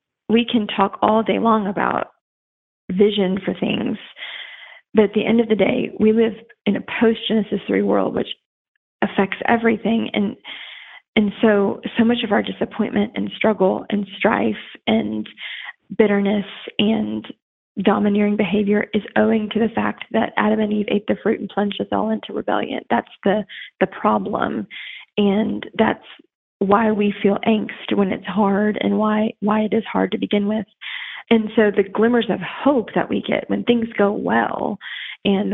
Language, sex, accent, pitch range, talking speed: English, female, American, 200-220 Hz, 165 wpm